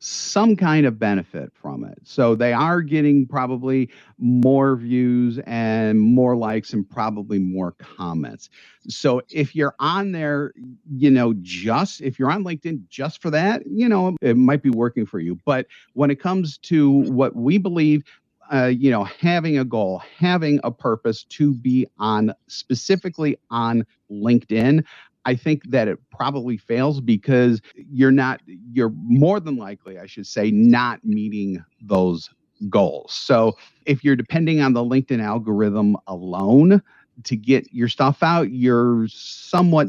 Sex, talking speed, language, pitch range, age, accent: male, 155 wpm, English, 110-145 Hz, 50-69, American